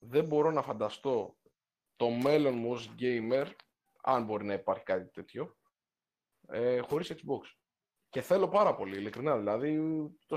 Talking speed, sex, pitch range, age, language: 140 wpm, male, 115-150 Hz, 20-39, Greek